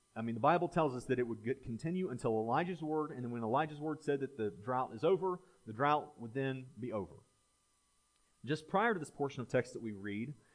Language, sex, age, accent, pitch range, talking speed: English, male, 30-49, American, 120-160 Hz, 230 wpm